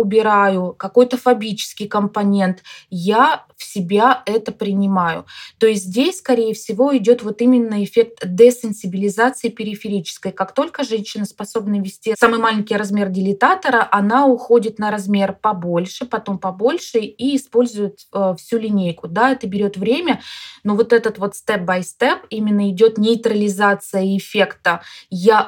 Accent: native